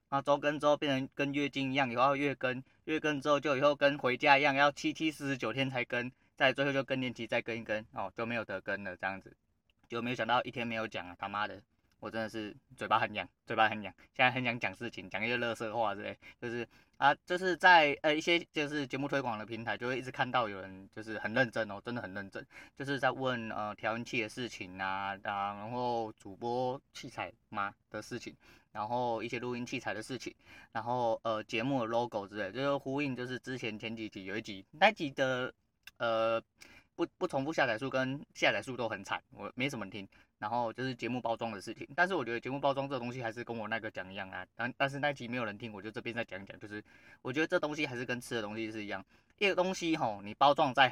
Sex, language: male, Chinese